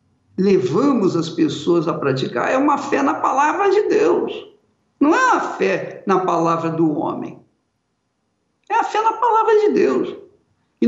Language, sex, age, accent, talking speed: Portuguese, male, 60-79, Brazilian, 155 wpm